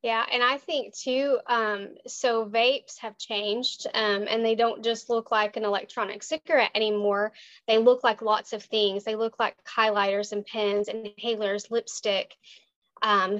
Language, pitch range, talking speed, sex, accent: English, 210-255 Hz, 165 wpm, female, American